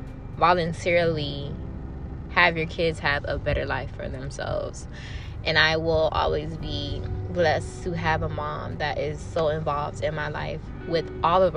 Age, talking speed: 10-29, 155 wpm